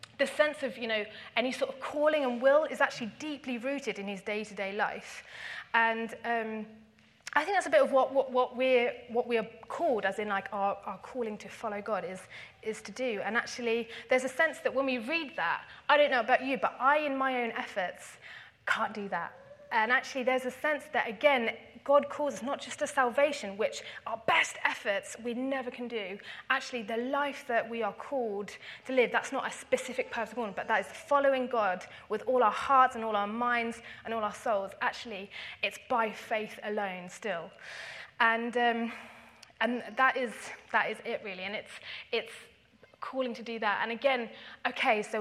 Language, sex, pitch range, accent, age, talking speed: English, female, 210-265 Hz, British, 30-49, 200 wpm